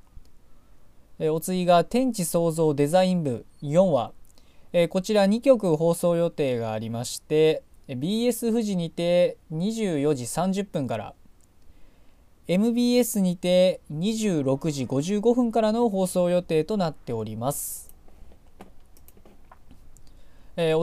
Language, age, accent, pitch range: Japanese, 20-39, native, 135-200 Hz